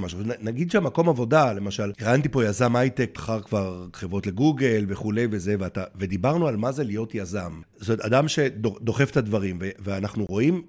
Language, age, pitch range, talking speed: Hebrew, 50-69, 115-170 Hz, 170 wpm